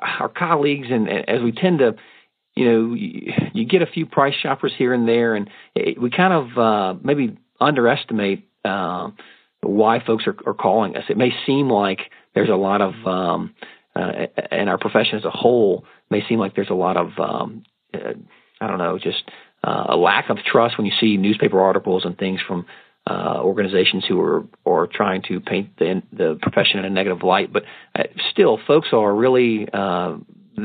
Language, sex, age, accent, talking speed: English, male, 40-59, American, 195 wpm